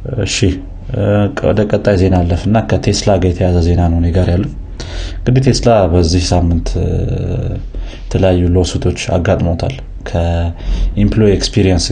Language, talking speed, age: Amharic, 100 wpm, 30-49